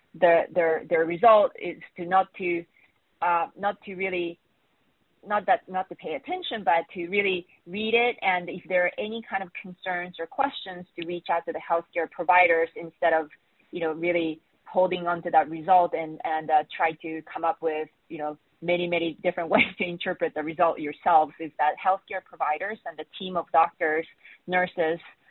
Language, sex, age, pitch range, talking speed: English, female, 30-49, 165-190 Hz, 185 wpm